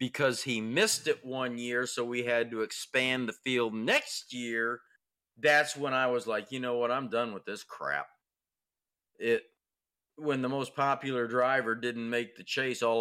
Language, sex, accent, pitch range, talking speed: English, male, American, 120-155 Hz, 180 wpm